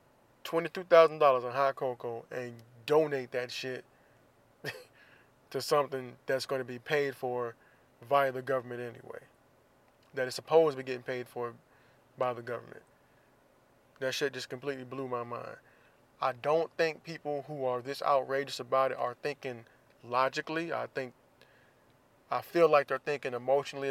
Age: 20-39